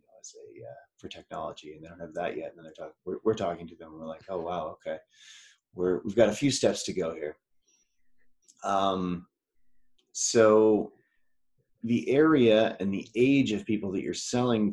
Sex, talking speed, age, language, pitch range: male, 190 wpm, 30-49, English, 90-125 Hz